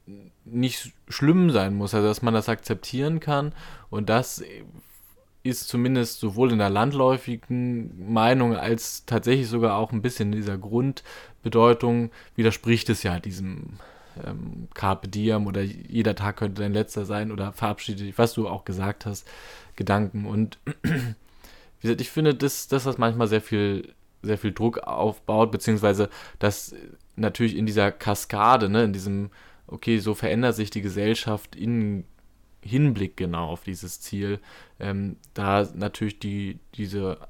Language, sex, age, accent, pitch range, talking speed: German, male, 20-39, German, 95-115 Hz, 145 wpm